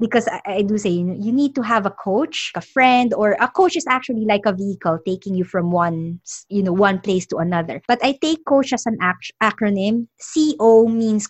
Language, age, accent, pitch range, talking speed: English, 20-39, Filipino, 200-265 Hz, 215 wpm